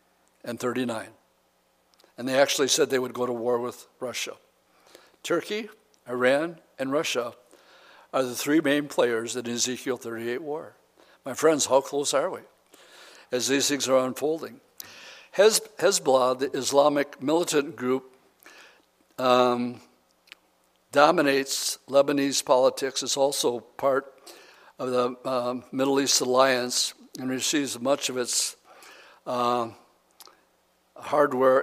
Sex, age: male, 60-79